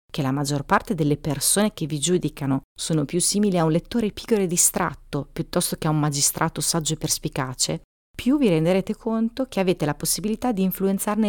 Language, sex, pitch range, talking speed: Italian, female, 145-190 Hz, 190 wpm